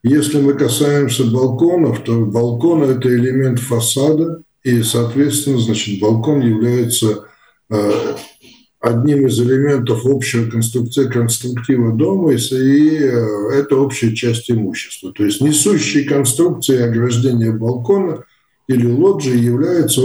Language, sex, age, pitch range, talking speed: Russian, male, 50-69, 115-145 Hz, 105 wpm